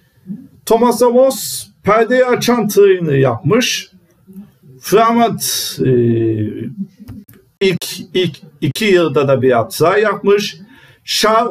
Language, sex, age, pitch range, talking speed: Turkish, male, 50-69, 130-200 Hz, 85 wpm